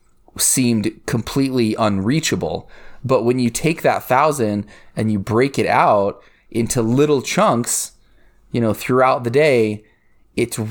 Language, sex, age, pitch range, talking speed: English, male, 20-39, 100-140 Hz, 130 wpm